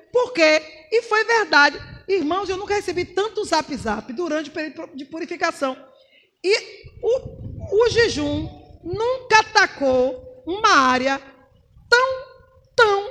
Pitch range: 275-410 Hz